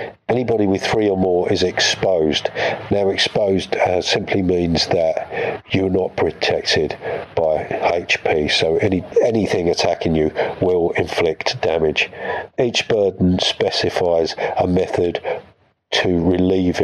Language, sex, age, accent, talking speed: English, male, 50-69, British, 120 wpm